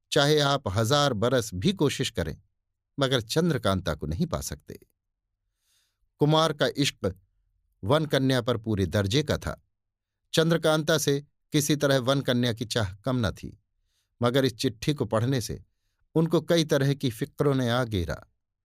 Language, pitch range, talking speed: Hindi, 100-150 Hz, 155 wpm